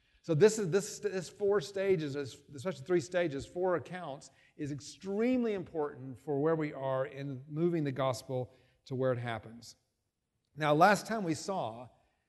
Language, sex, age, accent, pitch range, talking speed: English, male, 40-59, American, 140-200 Hz, 155 wpm